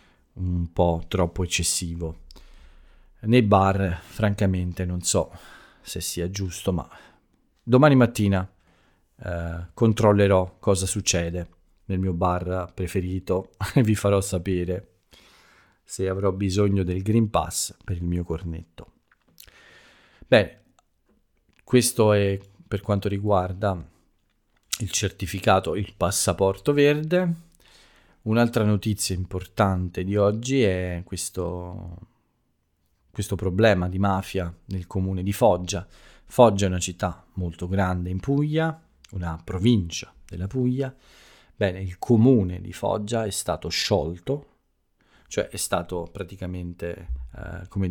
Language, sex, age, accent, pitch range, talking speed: Italian, male, 40-59, native, 90-105 Hz, 110 wpm